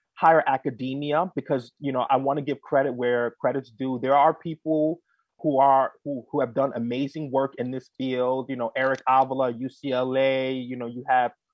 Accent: American